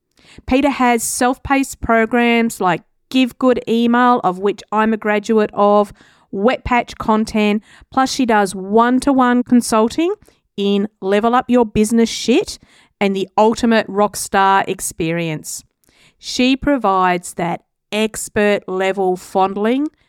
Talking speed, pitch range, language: 115 wpm, 195-255 Hz, English